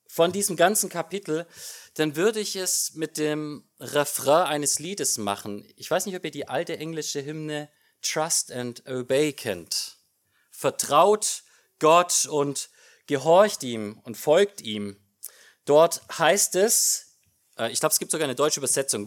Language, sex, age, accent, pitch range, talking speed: German, male, 30-49, German, 115-165 Hz, 145 wpm